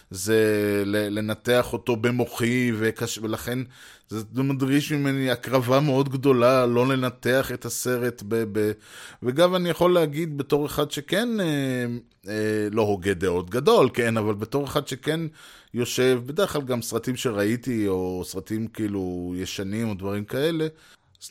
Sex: male